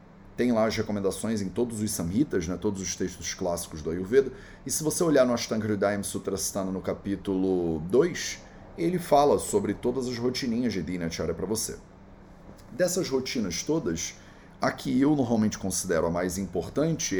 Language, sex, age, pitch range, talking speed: English, male, 30-49, 95-140 Hz, 165 wpm